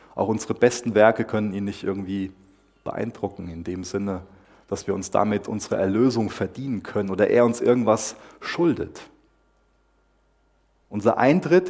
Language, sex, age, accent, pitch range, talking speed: German, male, 30-49, German, 100-135 Hz, 140 wpm